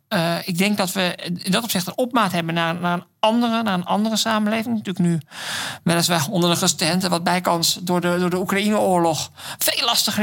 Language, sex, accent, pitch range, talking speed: Dutch, male, Dutch, 145-190 Hz, 205 wpm